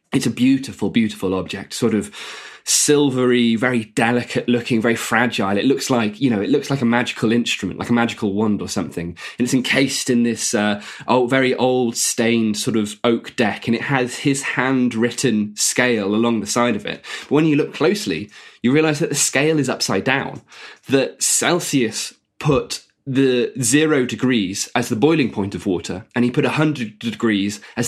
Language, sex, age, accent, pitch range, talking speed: English, male, 20-39, British, 115-145 Hz, 185 wpm